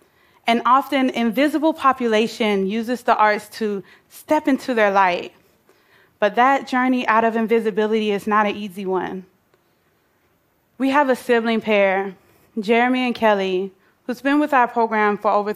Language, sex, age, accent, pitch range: Korean, female, 20-39, American, 205-240 Hz